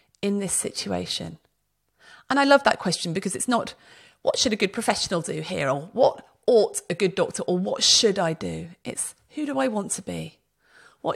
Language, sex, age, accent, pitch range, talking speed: English, female, 40-59, British, 180-255 Hz, 200 wpm